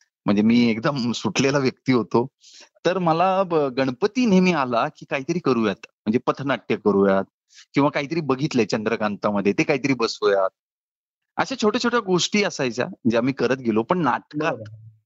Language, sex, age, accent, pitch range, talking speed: Marathi, male, 30-49, native, 105-160 Hz, 145 wpm